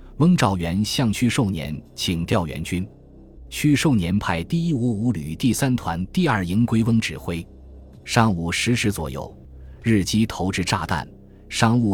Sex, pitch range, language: male, 80-115 Hz, Chinese